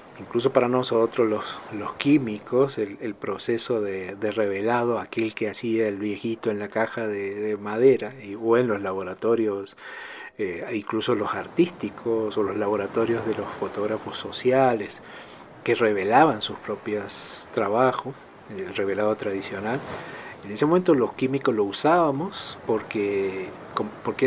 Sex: male